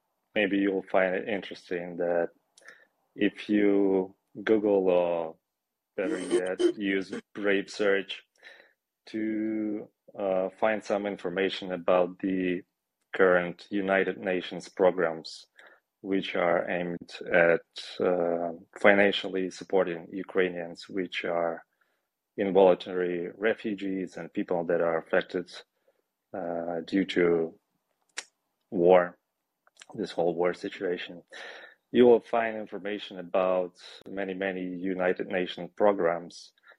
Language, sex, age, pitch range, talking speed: English, male, 30-49, 90-100 Hz, 100 wpm